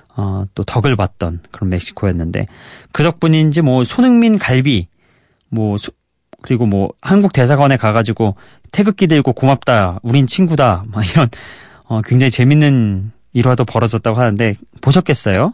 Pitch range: 105-155 Hz